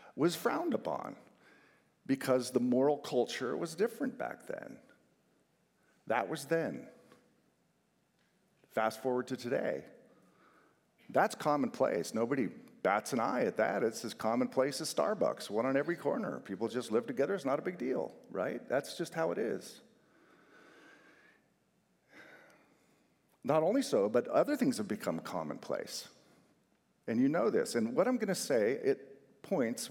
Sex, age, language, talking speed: male, 50-69, English, 140 wpm